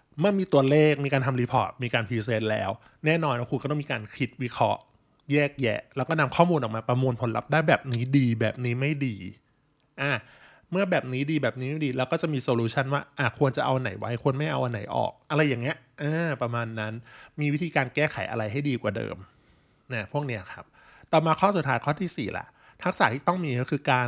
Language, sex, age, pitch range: Thai, male, 20-39, 120-150 Hz